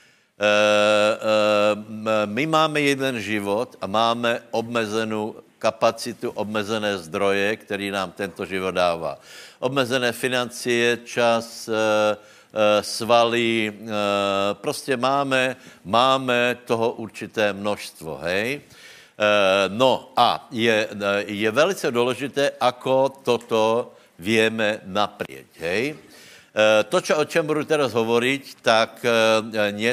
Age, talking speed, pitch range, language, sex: 60-79, 90 wpm, 105-125 Hz, Slovak, male